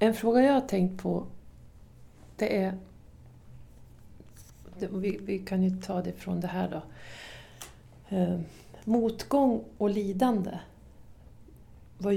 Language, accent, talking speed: Swedish, native, 105 wpm